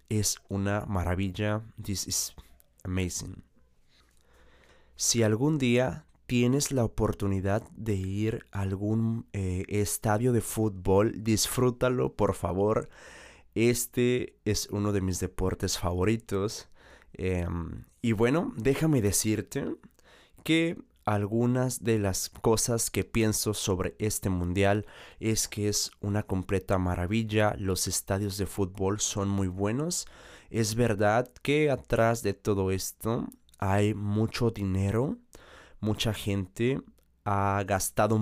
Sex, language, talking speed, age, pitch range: male, Spanish, 115 wpm, 20-39, 95-115 Hz